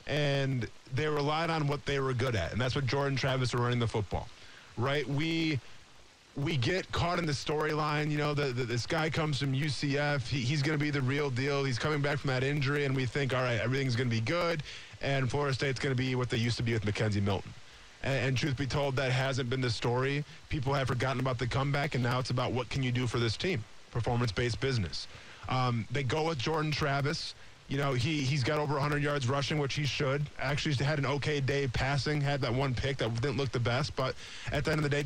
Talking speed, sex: 245 wpm, male